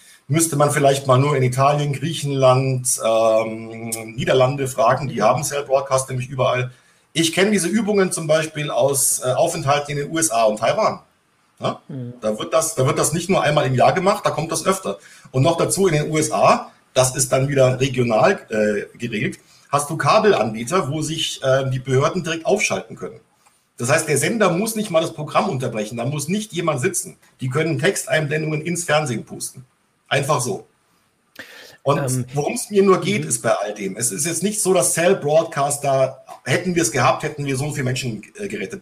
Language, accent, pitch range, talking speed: German, German, 130-170 Hz, 190 wpm